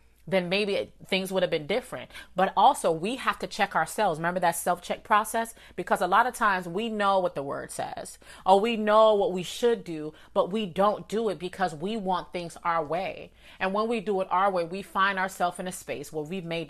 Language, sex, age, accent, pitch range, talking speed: English, female, 30-49, American, 155-195 Hz, 225 wpm